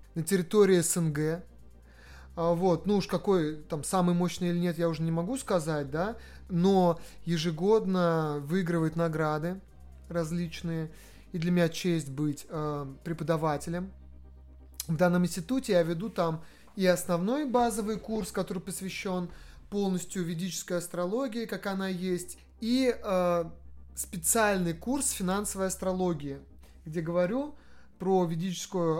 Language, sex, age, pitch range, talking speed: Russian, male, 30-49, 160-195 Hz, 120 wpm